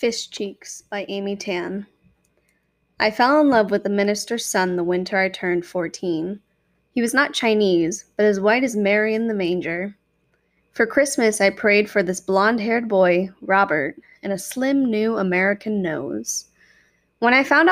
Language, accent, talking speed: English, American, 165 wpm